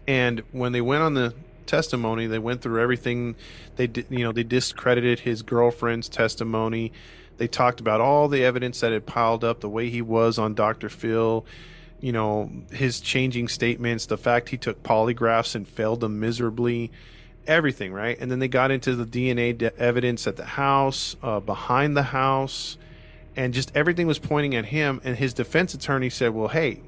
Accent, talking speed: American, 185 wpm